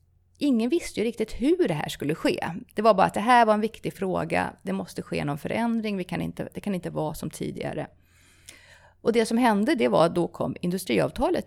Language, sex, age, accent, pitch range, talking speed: English, female, 30-49, Swedish, 130-220 Hz, 225 wpm